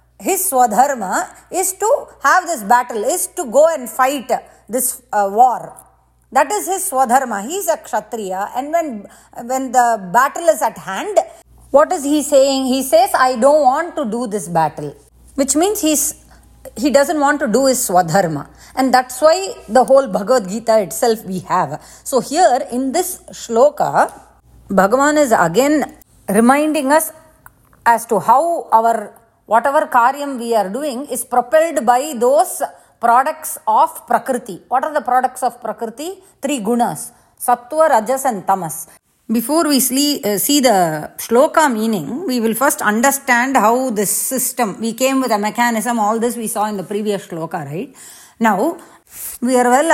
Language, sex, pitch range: English, female, 225-300 Hz